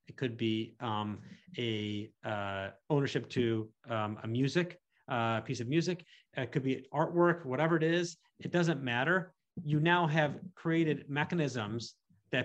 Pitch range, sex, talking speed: 125-165 Hz, male, 150 wpm